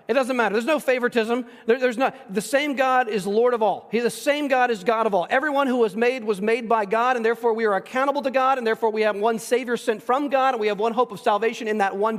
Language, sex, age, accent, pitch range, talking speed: English, male, 40-59, American, 200-245 Hz, 285 wpm